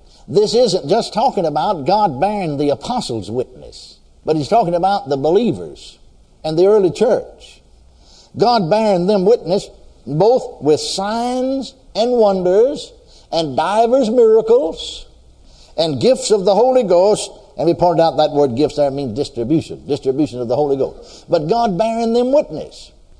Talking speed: 150 wpm